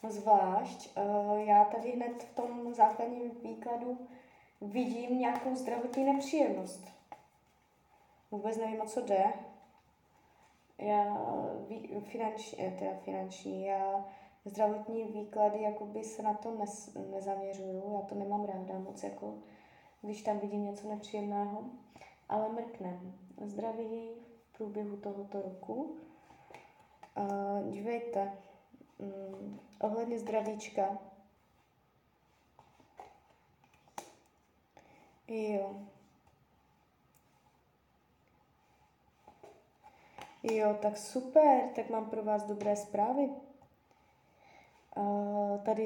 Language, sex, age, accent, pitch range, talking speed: Czech, female, 20-39, native, 205-235 Hz, 80 wpm